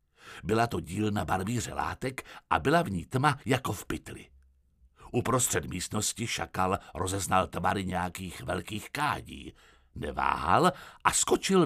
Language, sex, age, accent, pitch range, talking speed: Czech, male, 60-79, native, 80-120 Hz, 130 wpm